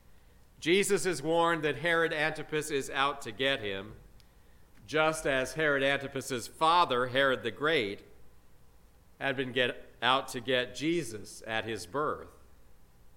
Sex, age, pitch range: male, 50-69, 100-160 Hz